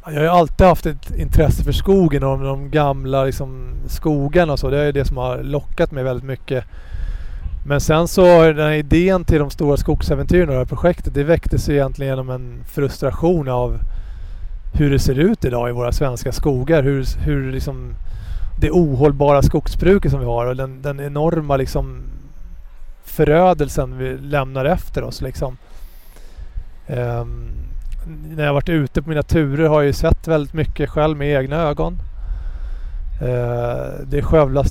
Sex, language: male, English